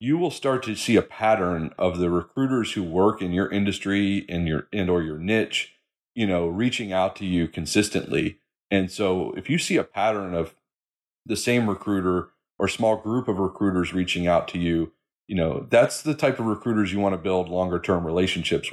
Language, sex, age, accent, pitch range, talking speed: English, male, 40-59, American, 90-110 Hz, 200 wpm